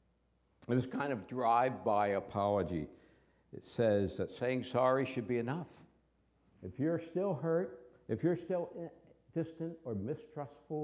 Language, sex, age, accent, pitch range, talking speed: English, male, 60-79, American, 105-165 Hz, 125 wpm